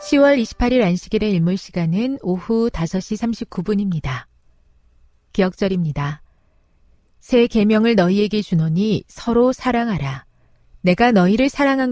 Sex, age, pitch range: female, 40-59, 155-235 Hz